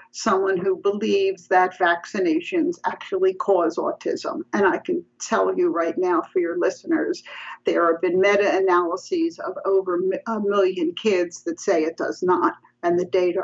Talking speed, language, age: 155 wpm, English, 50-69